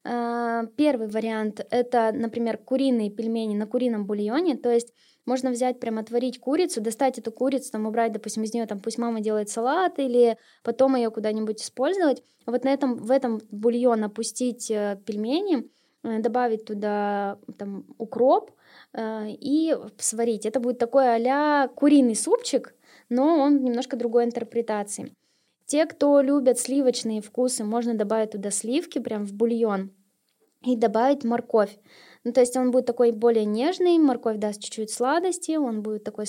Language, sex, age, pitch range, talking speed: Russian, female, 10-29, 220-265 Hz, 150 wpm